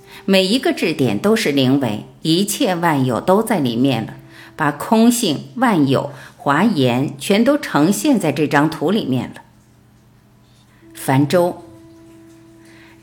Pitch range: 125-190 Hz